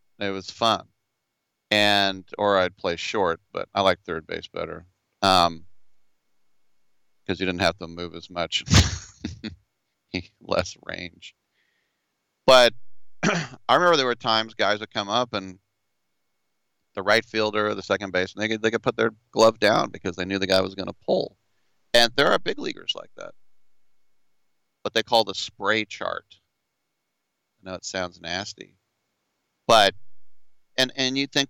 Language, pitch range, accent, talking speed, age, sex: English, 95-110 Hz, American, 160 wpm, 40-59, male